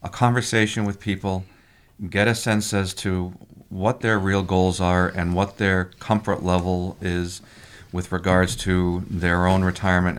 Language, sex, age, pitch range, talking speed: English, male, 40-59, 90-105 Hz, 155 wpm